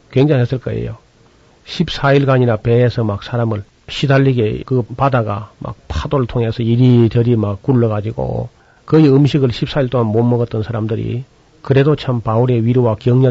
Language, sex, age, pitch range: Korean, male, 40-59, 110-135 Hz